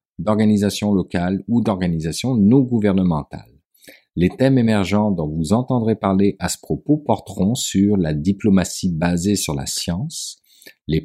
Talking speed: 130 wpm